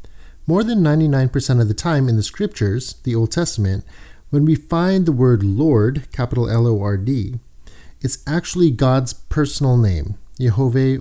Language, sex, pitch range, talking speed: English, male, 110-155 Hz, 140 wpm